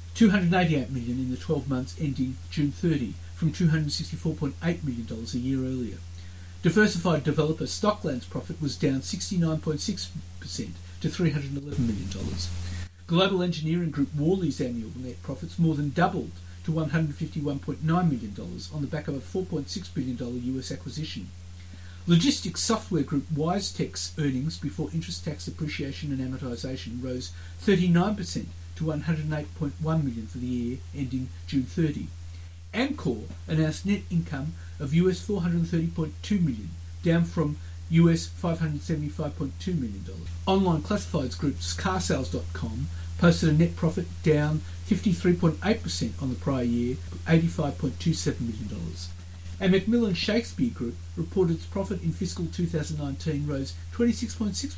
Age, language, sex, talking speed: 50-69, English, male, 125 wpm